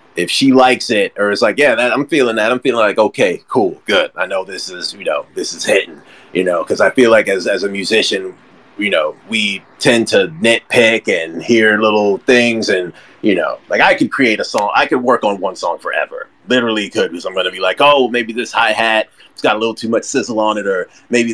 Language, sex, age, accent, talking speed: English, male, 30-49, American, 240 wpm